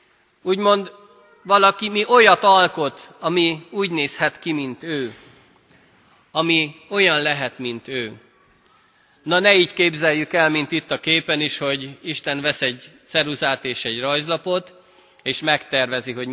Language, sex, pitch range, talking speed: Hungarian, male, 135-190 Hz, 135 wpm